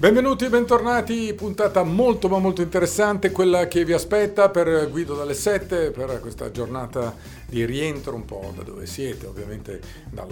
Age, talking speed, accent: 50-69, 155 wpm, native